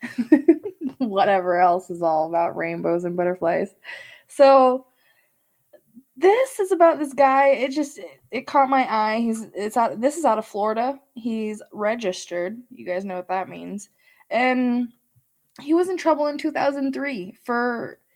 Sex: female